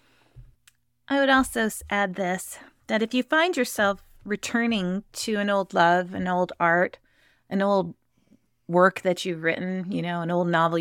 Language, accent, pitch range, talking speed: English, American, 170-205 Hz, 160 wpm